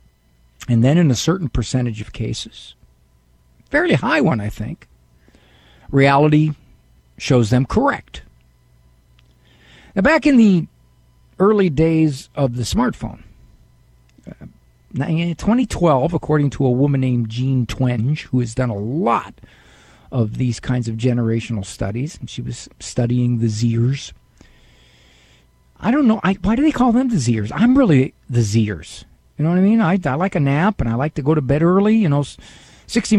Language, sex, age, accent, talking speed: English, male, 50-69, American, 160 wpm